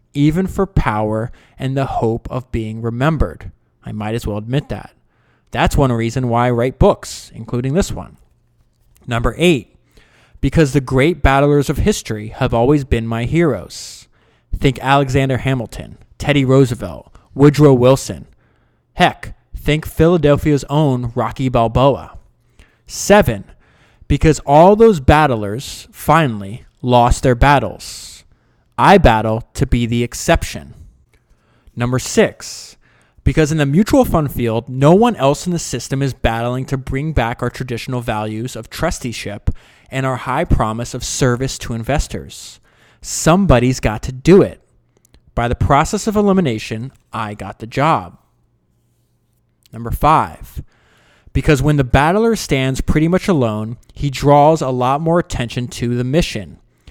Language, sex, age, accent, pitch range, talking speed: English, male, 20-39, American, 115-145 Hz, 140 wpm